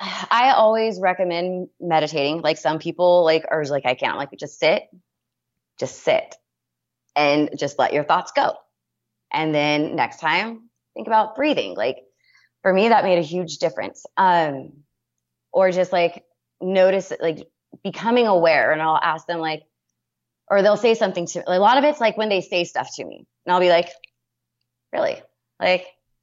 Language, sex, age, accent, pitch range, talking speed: English, female, 20-39, American, 170-220 Hz, 165 wpm